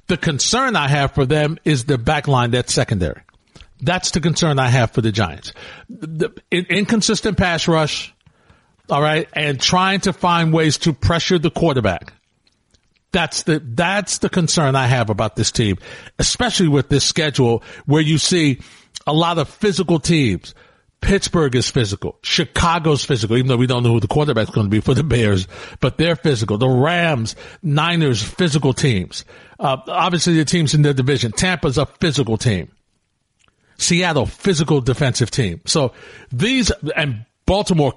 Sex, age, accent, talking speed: male, 60-79, American, 160 wpm